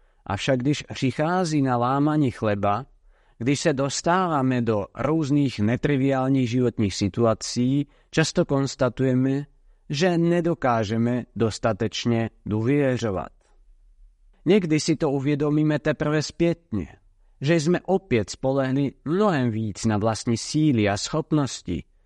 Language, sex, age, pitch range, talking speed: Czech, male, 50-69, 115-150 Hz, 100 wpm